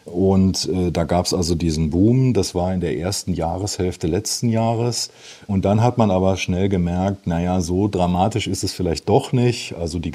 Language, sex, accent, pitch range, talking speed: German, male, German, 90-115 Hz, 195 wpm